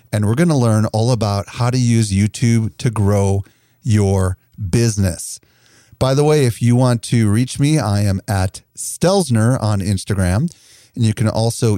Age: 40-59